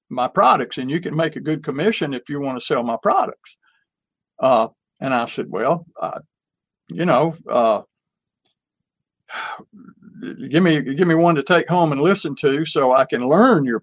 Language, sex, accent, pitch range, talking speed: English, male, American, 135-180 Hz, 180 wpm